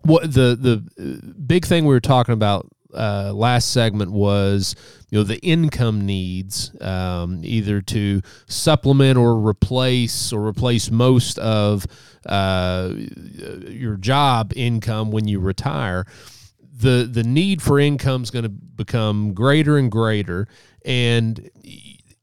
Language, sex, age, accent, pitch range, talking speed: English, male, 30-49, American, 105-130 Hz, 130 wpm